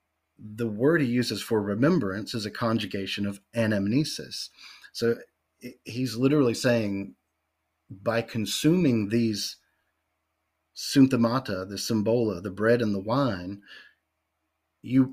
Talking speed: 105 wpm